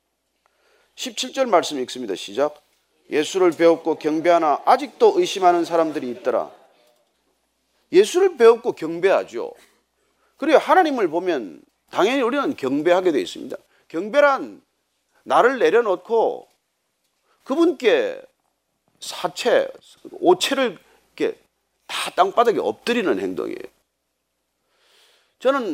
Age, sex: 40-59, male